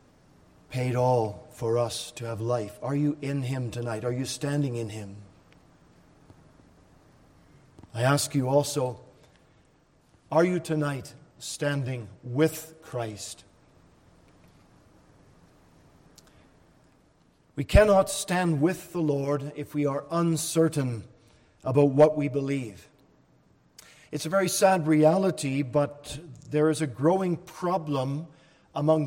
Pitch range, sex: 135-160 Hz, male